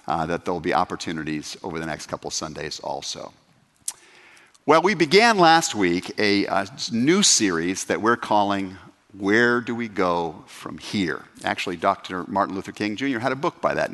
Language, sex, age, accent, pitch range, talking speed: English, male, 50-69, American, 90-130 Hz, 175 wpm